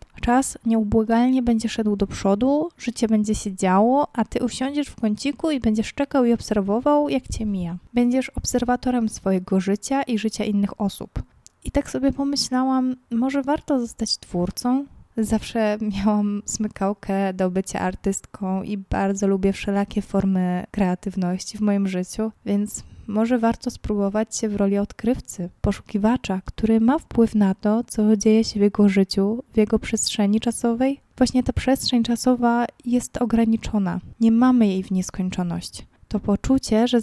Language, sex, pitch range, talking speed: Polish, female, 200-245 Hz, 150 wpm